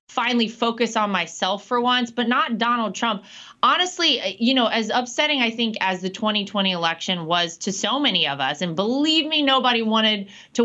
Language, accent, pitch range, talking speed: English, American, 200-255 Hz, 185 wpm